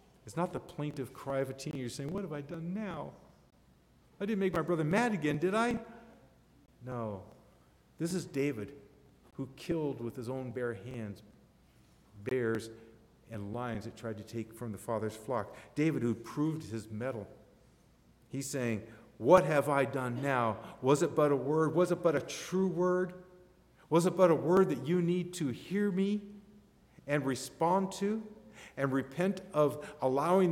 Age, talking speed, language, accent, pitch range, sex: 50-69, 170 wpm, English, American, 125-185 Hz, male